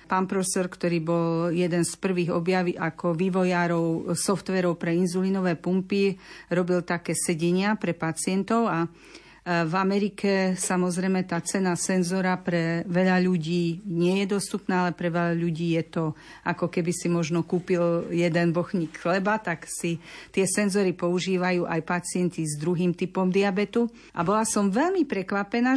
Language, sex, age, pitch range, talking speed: Slovak, female, 50-69, 170-205 Hz, 145 wpm